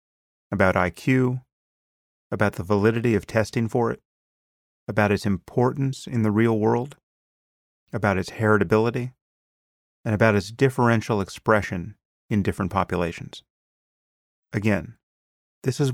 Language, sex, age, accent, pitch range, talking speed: English, male, 30-49, American, 95-120 Hz, 115 wpm